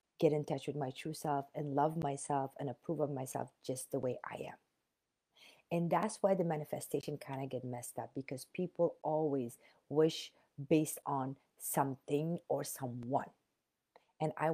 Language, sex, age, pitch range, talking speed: English, female, 40-59, 140-175 Hz, 165 wpm